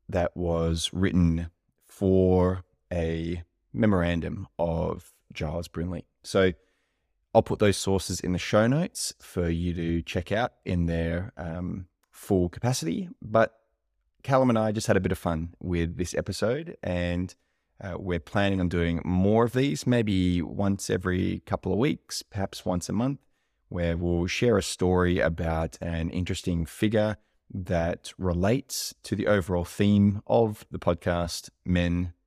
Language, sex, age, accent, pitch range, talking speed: English, male, 20-39, Australian, 85-105 Hz, 145 wpm